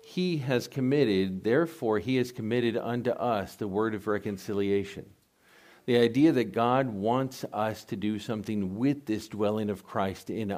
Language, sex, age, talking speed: English, male, 50-69, 160 wpm